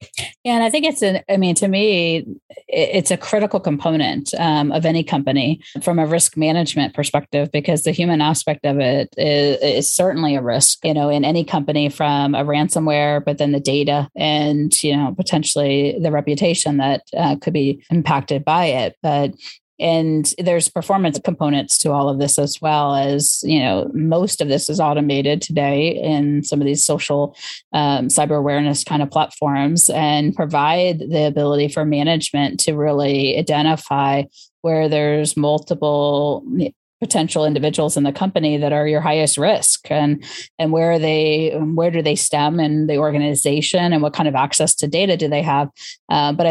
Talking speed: 175 wpm